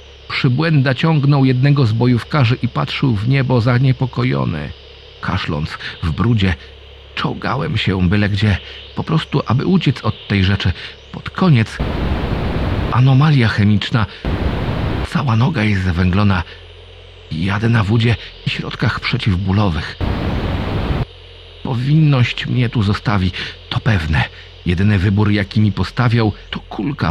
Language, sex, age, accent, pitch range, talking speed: Polish, male, 50-69, native, 95-135 Hz, 115 wpm